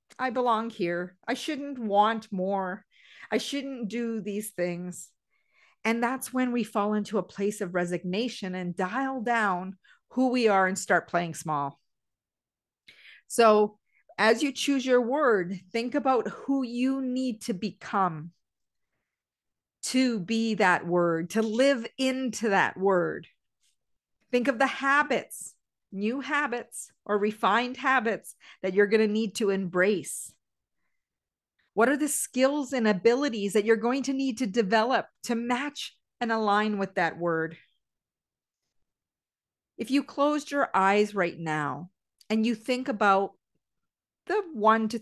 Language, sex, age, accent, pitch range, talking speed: English, female, 40-59, American, 195-250 Hz, 140 wpm